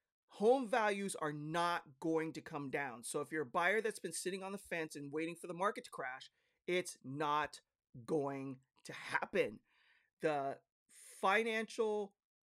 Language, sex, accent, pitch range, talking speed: English, male, American, 155-210 Hz, 160 wpm